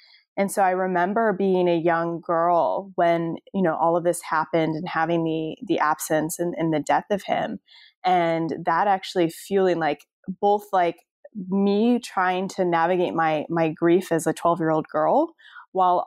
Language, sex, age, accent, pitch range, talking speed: English, female, 20-39, American, 165-195 Hz, 170 wpm